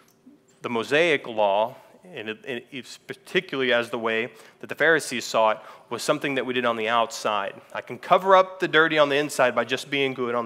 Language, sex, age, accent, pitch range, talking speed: English, male, 30-49, American, 130-155 Hz, 220 wpm